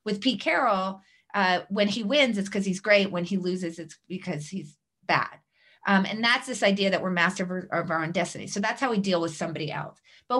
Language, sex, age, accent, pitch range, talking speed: English, female, 30-49, American, 175-210 Hz, 225 wpm